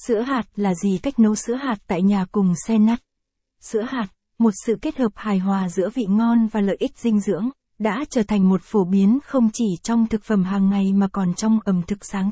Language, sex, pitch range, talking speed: Vietnamese, female, 195-235 Hz, 235 wpm